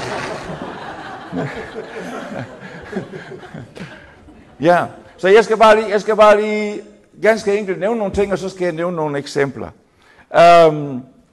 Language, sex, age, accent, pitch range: Danish, male, 60-79, native, 155-210 Hz